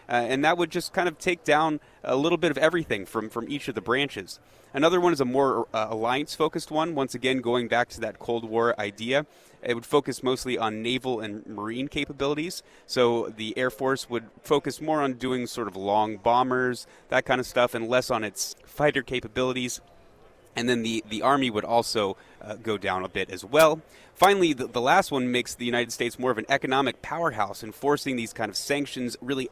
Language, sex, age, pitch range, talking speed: English, male, 30-49, 110-140 Hz, 210 wpm